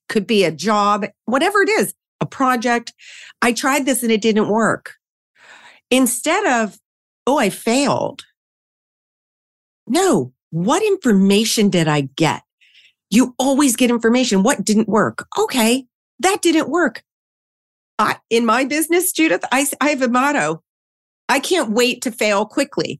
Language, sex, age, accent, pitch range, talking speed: English, female, 40-59, American, 180-245 Hz, 140 wpm